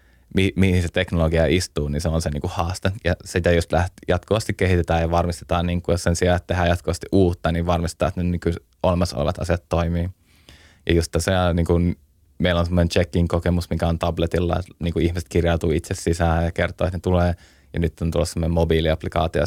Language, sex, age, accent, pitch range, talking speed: Finnish, male, 20-39, native, 85-90 Hz, 215 wpm